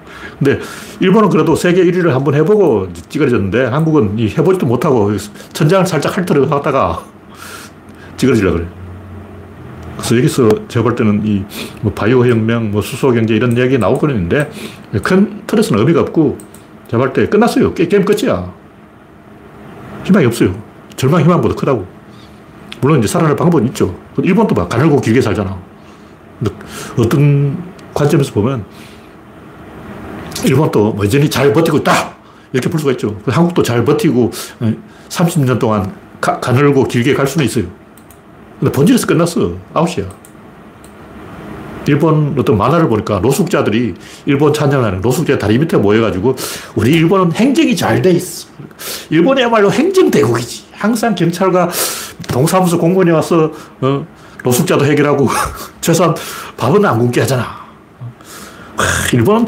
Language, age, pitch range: Korean, 40-59, 110-165 Hz